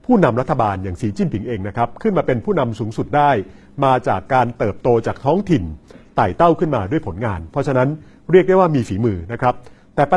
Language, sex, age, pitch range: Thai, male, 60-79, 115-145 Hz